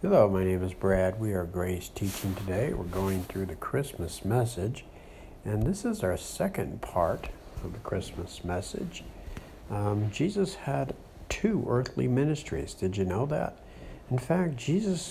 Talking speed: 155 wpm